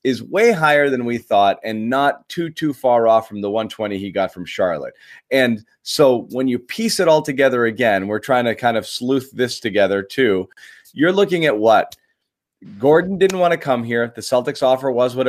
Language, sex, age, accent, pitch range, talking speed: English, male, 30-49, American, 110-145 Hz, 205 wpm